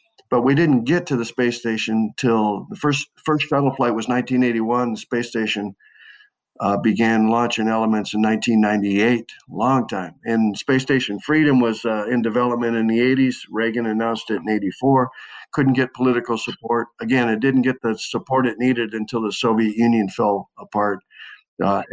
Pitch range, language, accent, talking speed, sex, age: 110-130 Hz, English, American, 170 wpm, male, 50-69